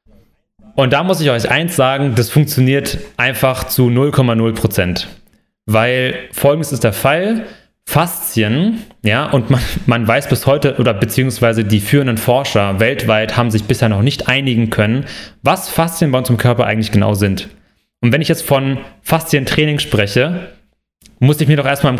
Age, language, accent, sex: 30-49, German, German, male